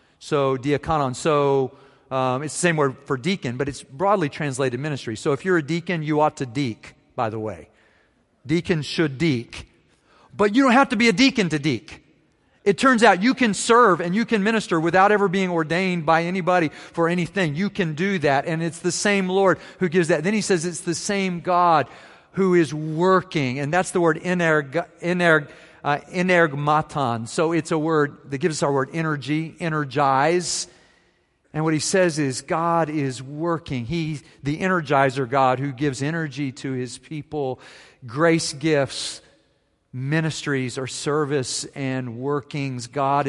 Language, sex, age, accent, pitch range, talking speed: English, male, 40-59, American, 135-170 Hz, 175 wpm